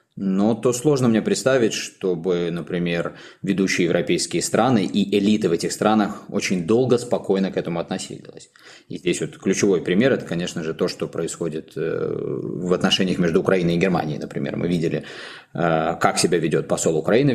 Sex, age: male, 20-39